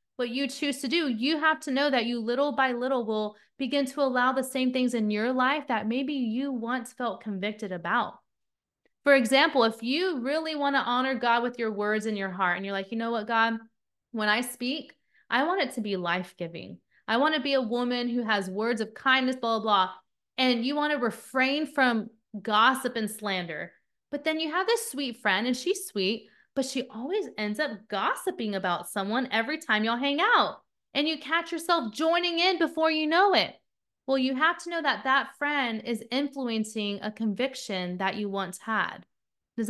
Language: English